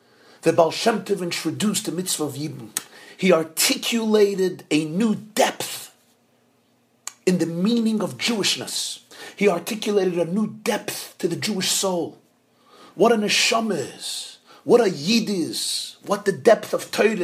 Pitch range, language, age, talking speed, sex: 175-225 Hz, English, 40-59, 145 wpm, male